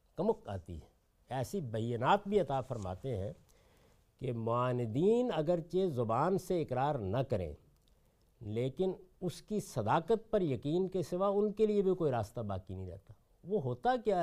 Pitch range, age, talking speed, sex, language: 110-180 Hz, 60-79, 155 wpm, male, Urdu